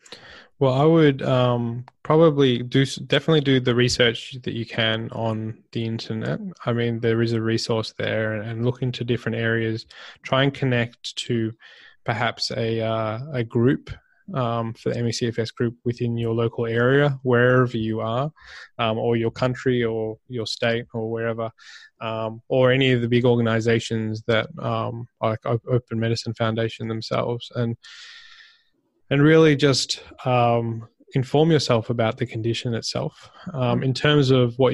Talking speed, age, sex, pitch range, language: 150 wpm, 20-39, male, 115-130 Hz, English